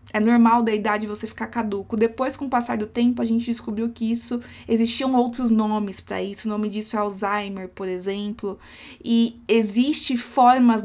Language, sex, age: Portuguese, female, 20-39